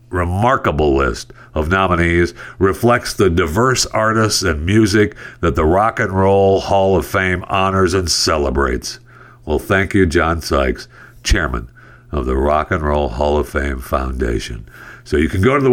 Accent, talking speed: American, 160 wpm